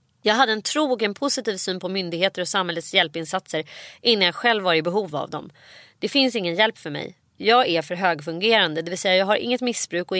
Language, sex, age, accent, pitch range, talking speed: Swedish, female, 30-49, native, 165-215 Hz, 220 wpm